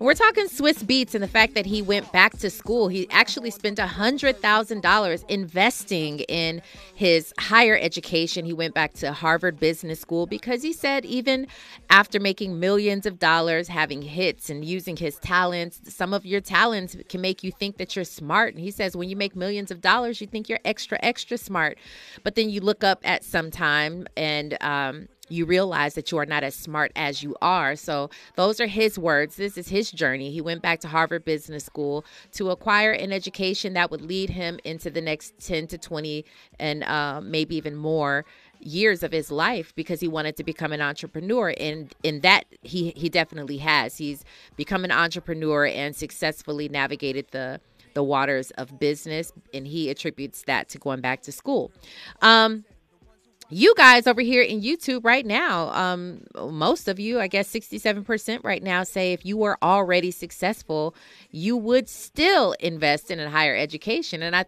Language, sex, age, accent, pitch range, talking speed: English, female, 30-49, American, 155-205 Hz, 185 wpm